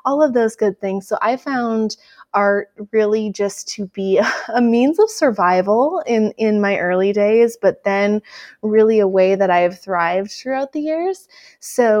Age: 20-39